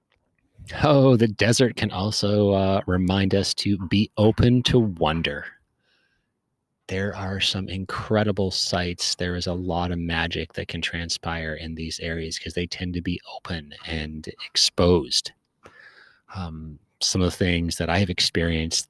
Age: 30-49